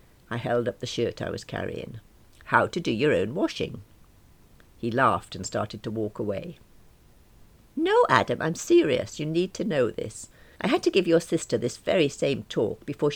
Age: 60-79